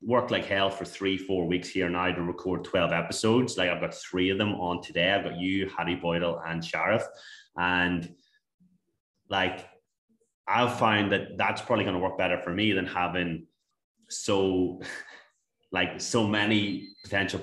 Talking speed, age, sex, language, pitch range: 165 wpm, 30-49, male, English, 90-105 Hz